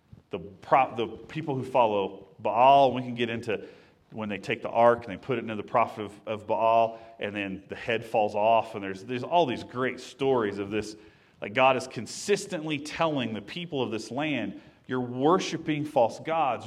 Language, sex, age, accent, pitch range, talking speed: English, male, 40-59, American, 115-155 Hz, 195 wpm